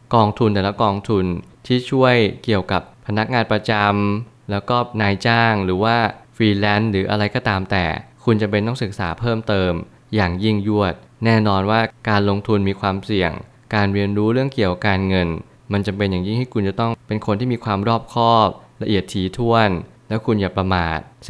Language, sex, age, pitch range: Thai, male, 20-39, 100-115 Hz